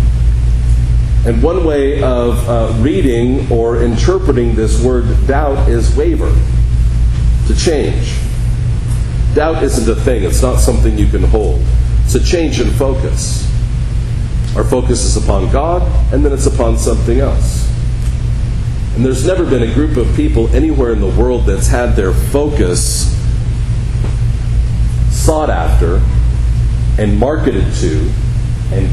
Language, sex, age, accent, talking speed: English, male, 40-59, American, 130 wpm